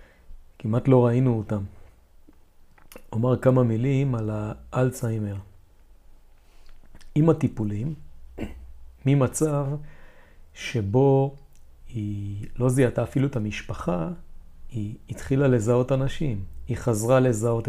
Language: Hebrew